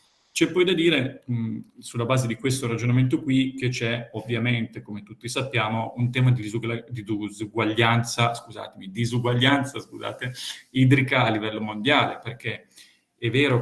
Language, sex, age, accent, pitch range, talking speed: Italian, male, 40-59, native, 110-130 Hz, 130 wpm